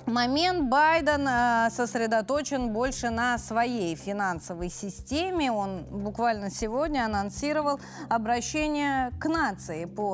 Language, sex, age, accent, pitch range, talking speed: Russian, female, 30-49, native, 205-290 Hz, 100 wpm